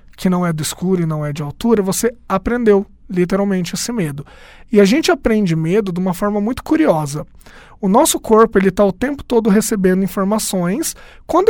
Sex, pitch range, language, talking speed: male, 180-230 Hz, Portuguese, 185 wpm